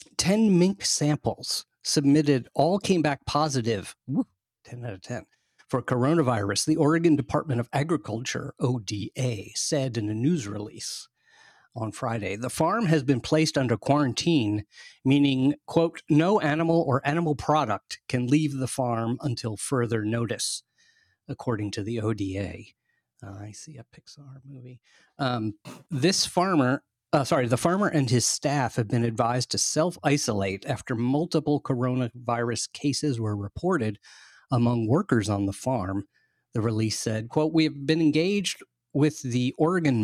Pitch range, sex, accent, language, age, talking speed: 115-150 Hz, male, American, English, 40-59, 140 wpm